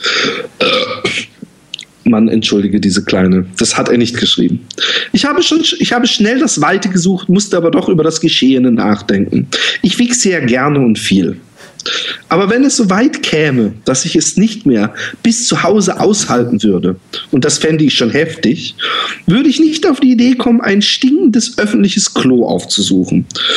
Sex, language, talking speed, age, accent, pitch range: male, German, 165 wpm, 40-59, German, 140-220 Hz